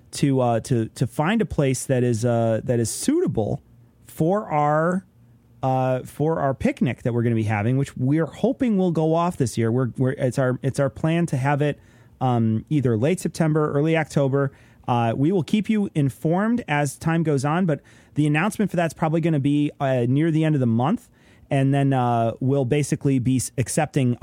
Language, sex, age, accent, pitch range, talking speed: English, male, 30-49, American, 125-150 Hz, 205 wpm